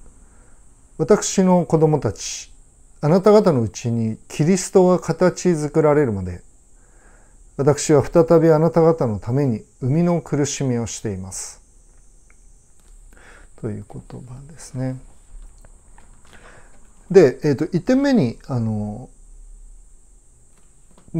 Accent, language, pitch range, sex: native, Japanese, 100-160 Hz, male